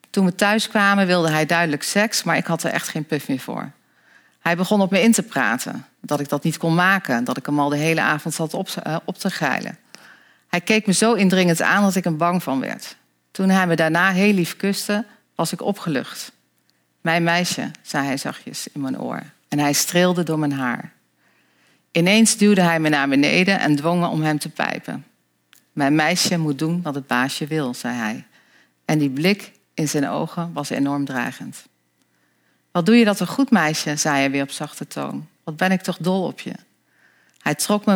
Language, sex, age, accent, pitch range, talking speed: Dutch, female, 40-59, Dutch, 150-190 Hz, 210 wpm